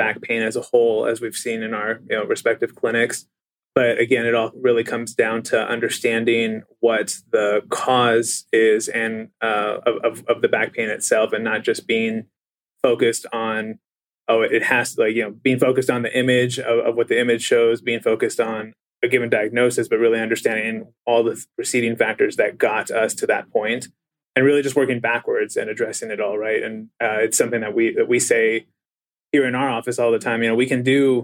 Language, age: English, 20-39